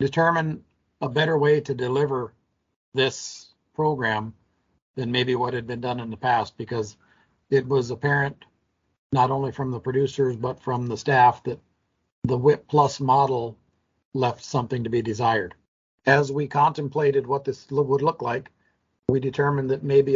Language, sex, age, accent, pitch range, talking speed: English, male, 50-69, American, 125-145 Hz, 155 wpm